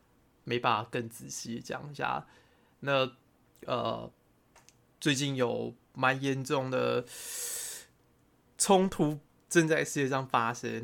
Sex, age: male, 20-39